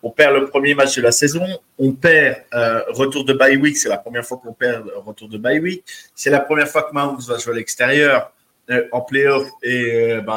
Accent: French